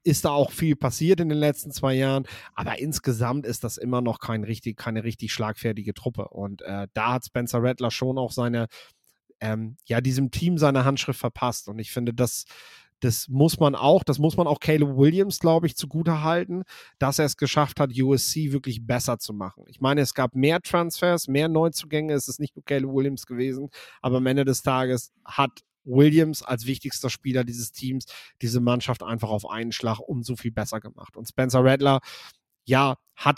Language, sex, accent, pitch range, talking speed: German, male, German, 125-150 Hz, 195 wpm